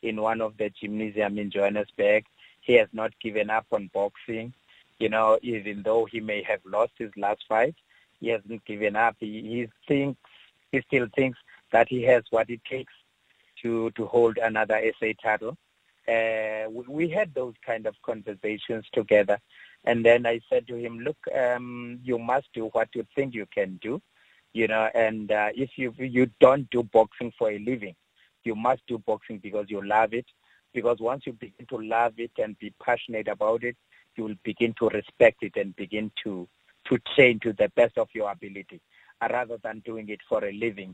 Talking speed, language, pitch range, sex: 190 wpm, English, 110-120 Hz, male